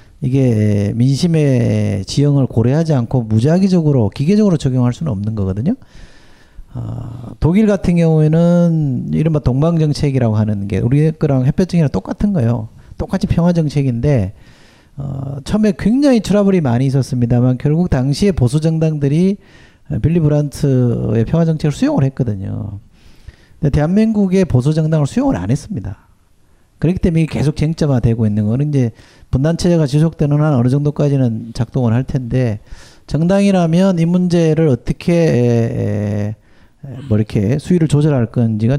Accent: native